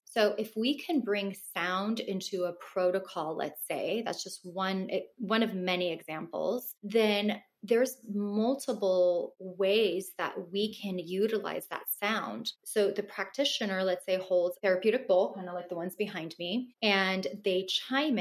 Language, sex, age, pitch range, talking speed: English, female, 20-39, 180-215 Hz, 150 wpm